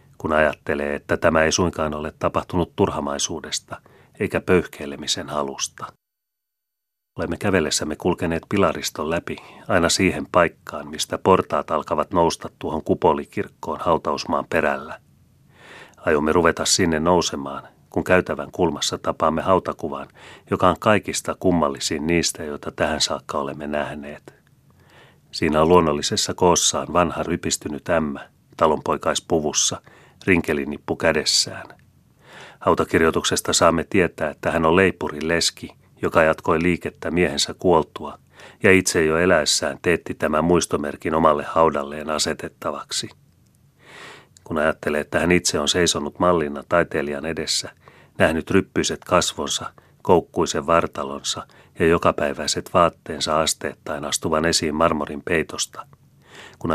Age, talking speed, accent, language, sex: 40-59, 110 wpm, native, Finnish, male